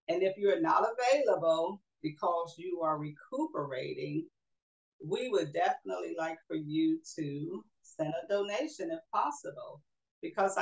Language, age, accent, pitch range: English, 50-69, American, 160-210 Hz